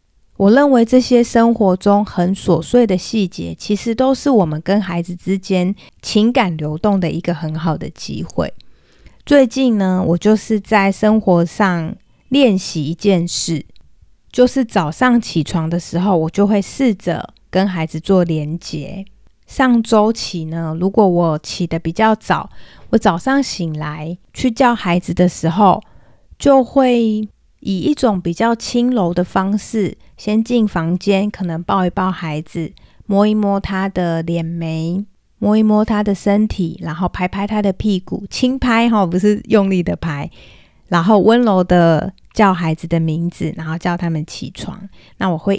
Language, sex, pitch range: Chinese, female, 170-220 Hz